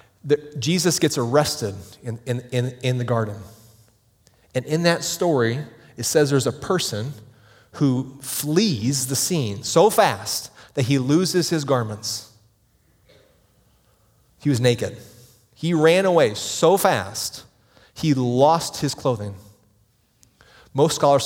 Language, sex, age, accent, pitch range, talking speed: English, male, 30-49, American, 105-140 Hz, 125 wpm